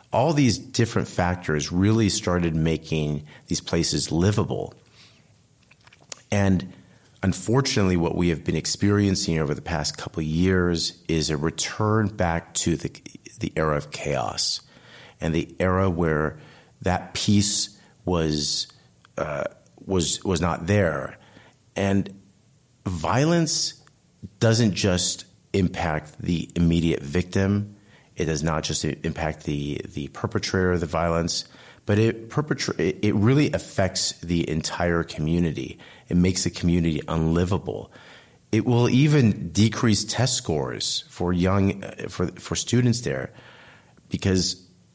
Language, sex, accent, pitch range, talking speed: English, male, American, 80-110 Hz, 120 wpm